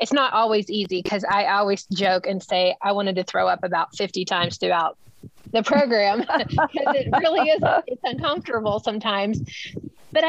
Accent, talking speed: American, 170 wpm